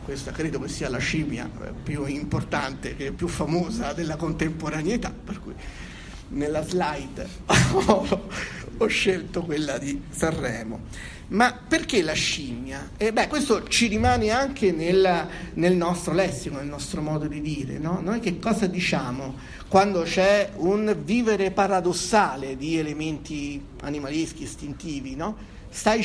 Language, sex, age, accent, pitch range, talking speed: Italian, male, 50-69, native, 150-195 Hz, 130 wpm